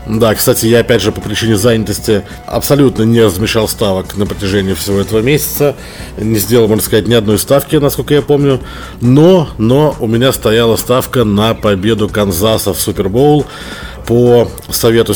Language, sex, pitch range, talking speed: Russian, male, 105-135 Hz, 160 wpm